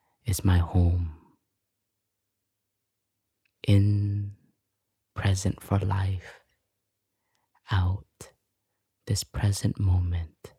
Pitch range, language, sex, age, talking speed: 95-105 Hz, English, male, 20-39, 60 wpm